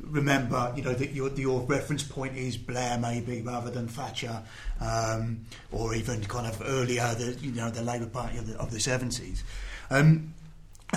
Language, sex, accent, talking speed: English, male, British, 175 wpm